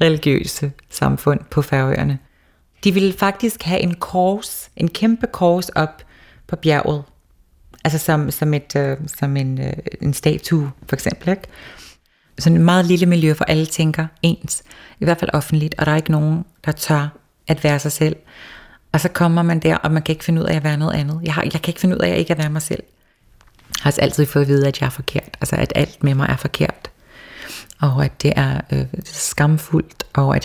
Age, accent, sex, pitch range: 30-49, native, female, 140-160 Hz